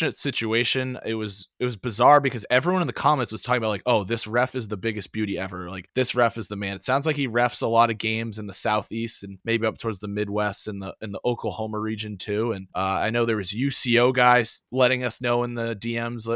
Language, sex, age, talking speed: English, male, 20-39, 250 wpm